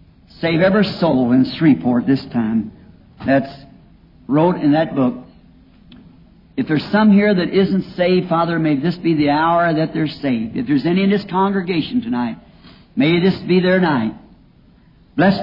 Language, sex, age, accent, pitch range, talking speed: English, male, 60-79, American, 155-200 Hz, 160 wpm